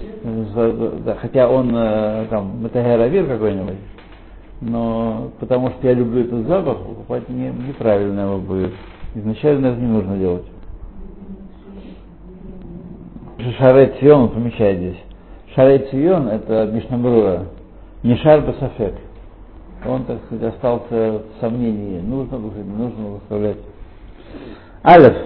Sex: male